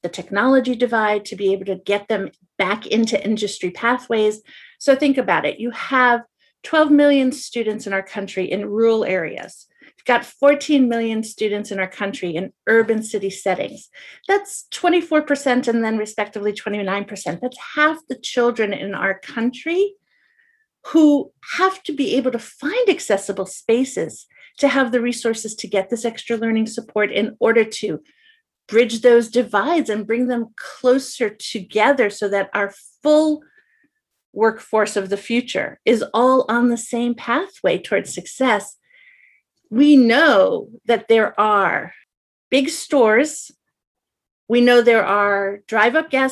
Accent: American